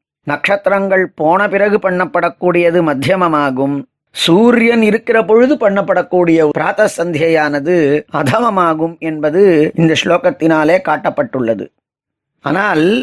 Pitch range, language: 170-205 Hz, Tamil